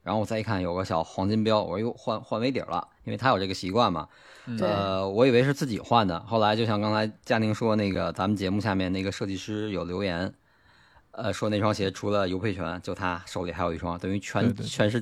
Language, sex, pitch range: Chinese, male, 95-115 Hz